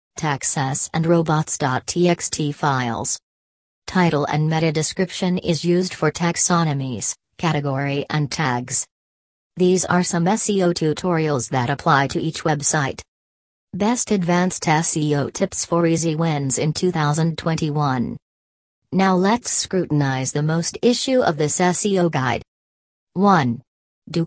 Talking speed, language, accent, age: 115 wpm, English, American, 40-59